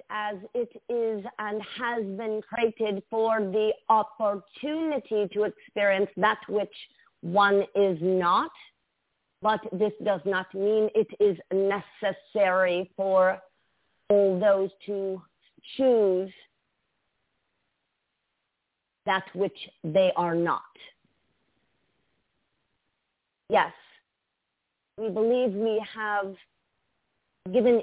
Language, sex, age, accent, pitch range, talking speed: English, female, 40-59, American, 200-245 Hz, 90 wpm